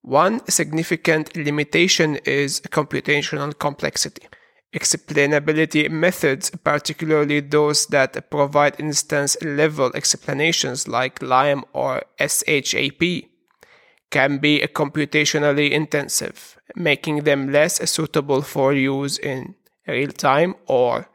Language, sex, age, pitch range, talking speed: English, male, 30-49, 145-165 Hz, 90 wpm